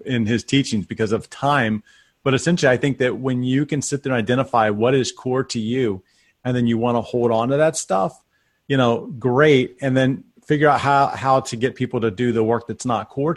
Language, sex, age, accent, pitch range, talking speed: English, male, 30-49, American, 115-140 Hz, 235 wpm